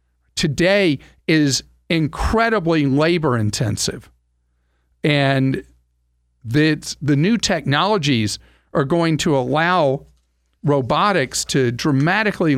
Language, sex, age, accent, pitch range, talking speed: English, male, 50-69, American, 125-175 Hz, 75 wpm